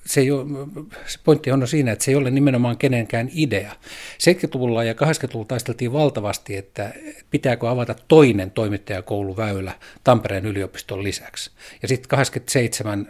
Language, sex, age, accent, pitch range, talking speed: Finnish, male, 50-69, native, 105-135 Hz, 135 wpm